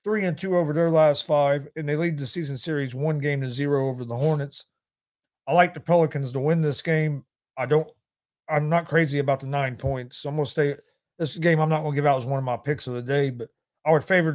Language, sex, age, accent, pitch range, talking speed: English, male, 40-59, American, 140-165 Hz, 250 wpm